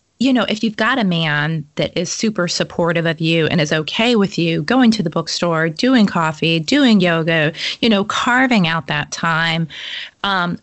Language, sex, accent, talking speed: English, female, American, 185 wpm